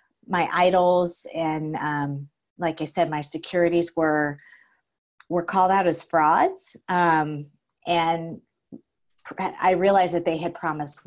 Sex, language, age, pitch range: female, English, 20-39, 150-175 Hz